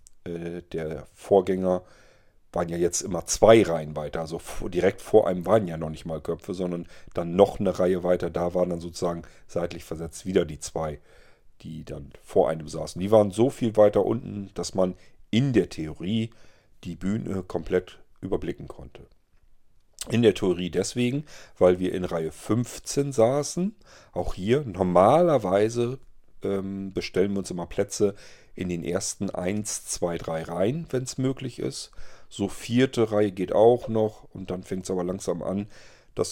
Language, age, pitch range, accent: German, 40-59, 85-105 Hz, German